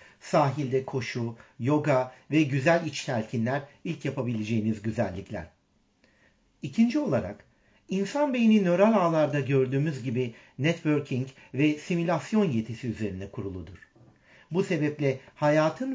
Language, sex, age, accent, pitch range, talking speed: Turkish, male, 60-79, native, 115-160 Hz, 100 wpm